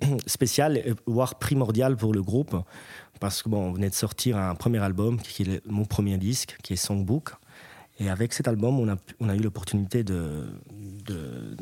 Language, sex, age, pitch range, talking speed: French, male, 30-49, 95-115 Hz, 180 wpm